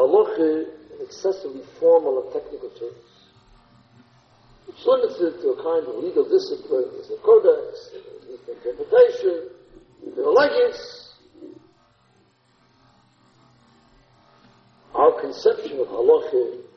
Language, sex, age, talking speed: English, male, 60-79, 95 wpm